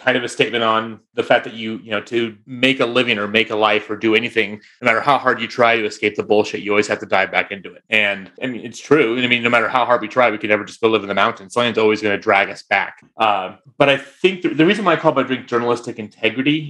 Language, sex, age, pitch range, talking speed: English, male, 30-49, 105-125 Hz, 295 wpm